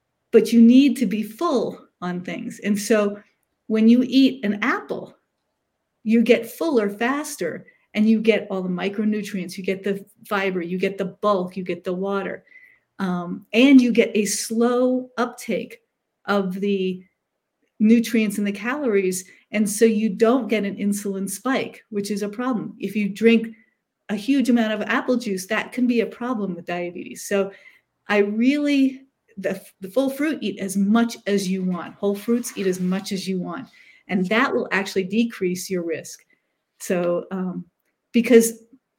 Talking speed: 170 wpm